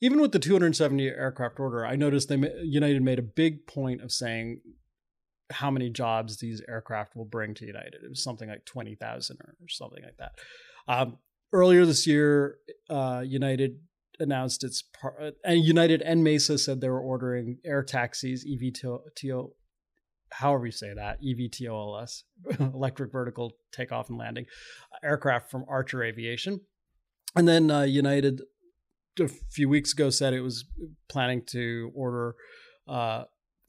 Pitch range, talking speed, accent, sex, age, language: 125-160 Hz, 150 wpm, American, male, 30-49, English